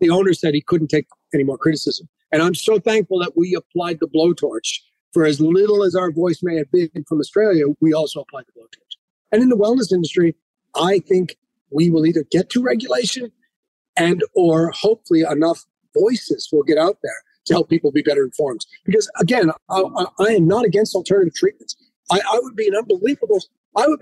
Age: 40-59